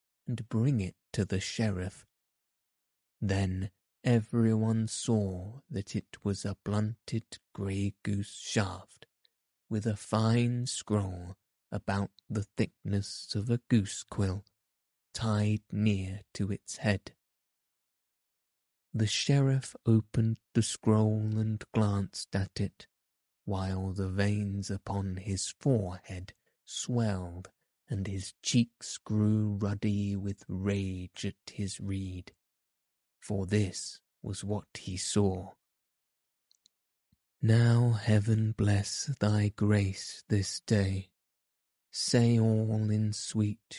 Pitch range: 95-110 Hz